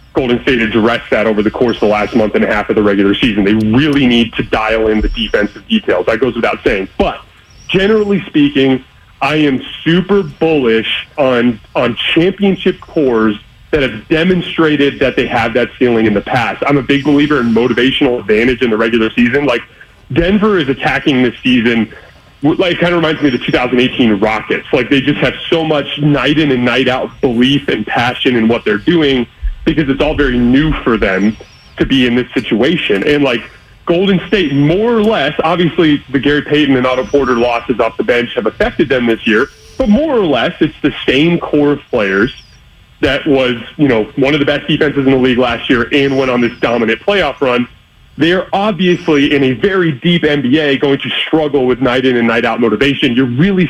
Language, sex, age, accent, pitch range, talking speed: English, male, 30-49, American, 120-155 Hz, 205 wpm